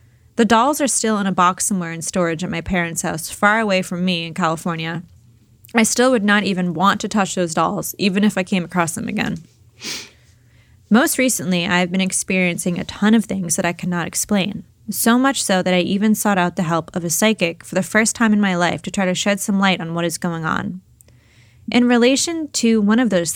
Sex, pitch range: female, 170-210 Hz